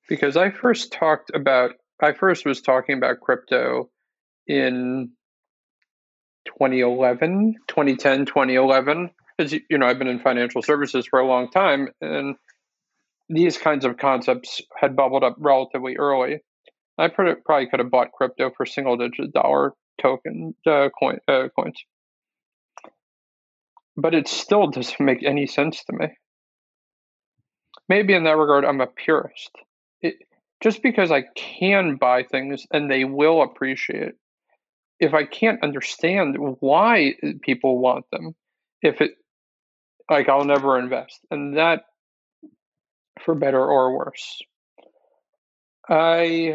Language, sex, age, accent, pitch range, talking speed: English, male, 40-59, American, 130-155 Hz, 130 wpm